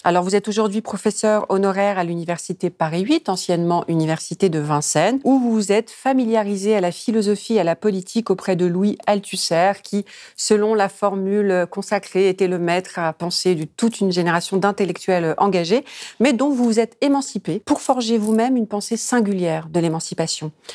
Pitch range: 180-220 Hz